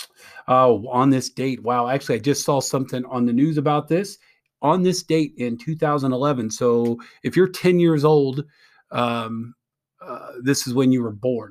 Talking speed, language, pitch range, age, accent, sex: 180 wpm, English, 120-150 Hz, 40-59, American, male